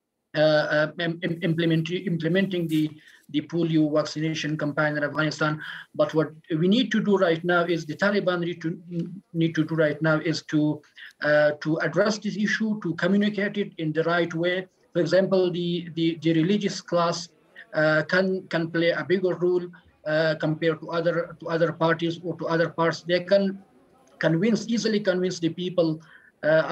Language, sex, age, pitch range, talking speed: English, male, 50-69, 160-185 Hz, 170 wpm